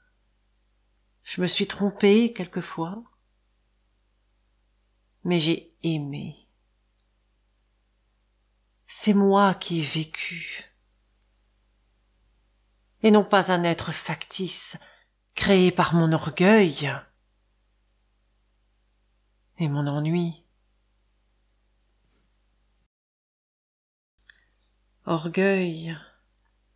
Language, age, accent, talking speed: French, 50-69, French, 60 wpm